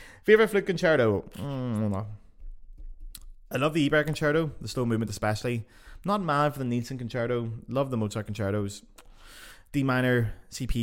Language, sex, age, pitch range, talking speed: English, male, 20-39, 105-140 Hz, 165 wpm